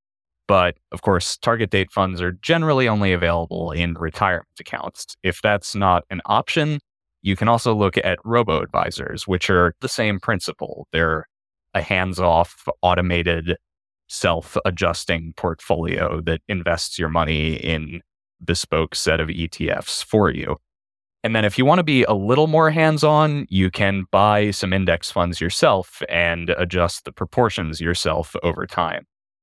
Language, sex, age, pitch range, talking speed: English, male, 20-39, 85-105 Hz, 145 wpm